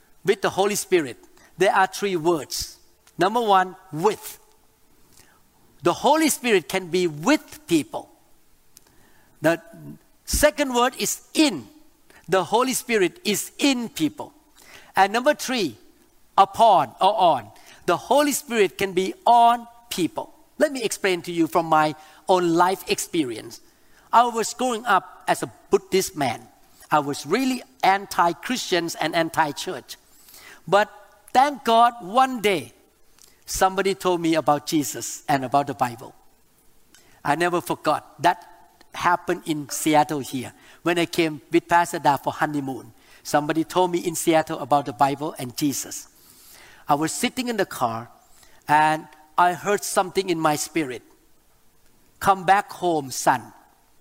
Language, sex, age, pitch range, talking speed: English, male, 50-69, 160-230 Hz, 135 wpm